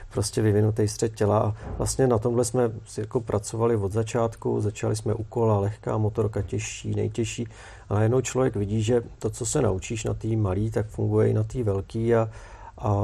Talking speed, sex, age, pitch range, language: 185 wpm, male, 40-59, 105-115 Hz, Czech